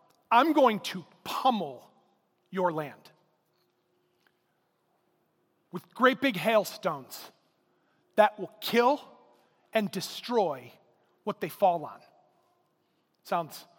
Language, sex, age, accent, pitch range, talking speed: English, male, 30-49, American, 195-255 Hz, 85 wpm